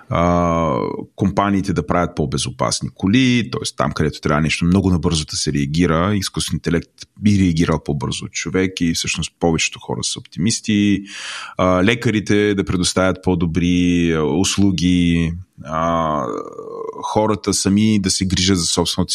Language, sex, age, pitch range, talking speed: Bulgarian, male, 30-49, 85-105 Hz, 140 wpm